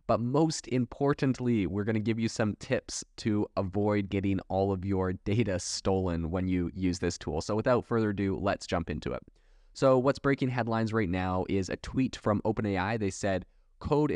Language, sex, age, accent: English, male, 20-39, American